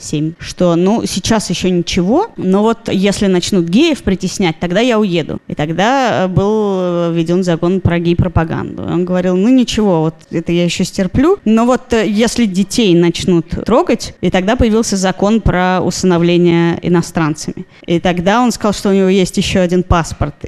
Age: 20-39